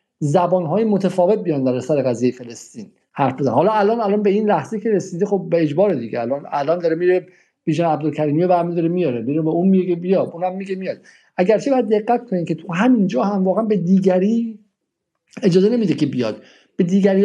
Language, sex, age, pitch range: Persian, male, 50-69, 165-210 Hz